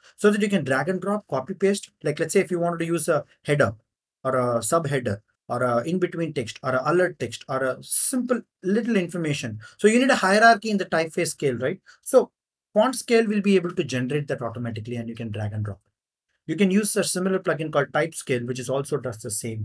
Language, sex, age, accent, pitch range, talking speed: English, male, 30-49, Indian, 125-170 Hz, 230 wpm